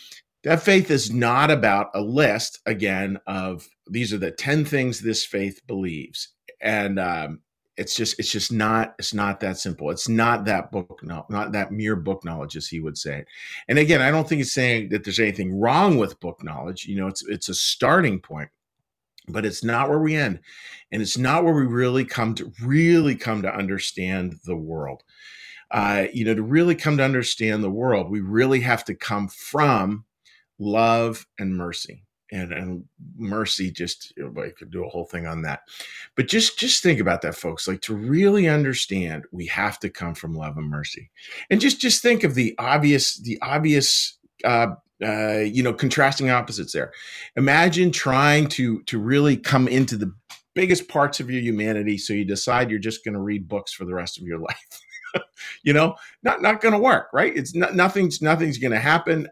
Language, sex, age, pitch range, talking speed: English, male, 40-59, 95-140 Hz, 195 wpm